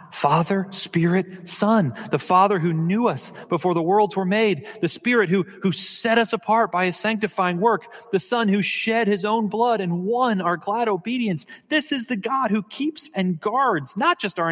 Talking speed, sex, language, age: 195 wpm, male, English, 40-59